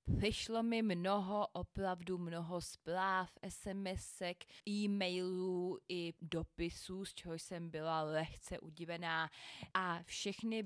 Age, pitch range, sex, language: 20-39, 160-185 Hz, female, Czech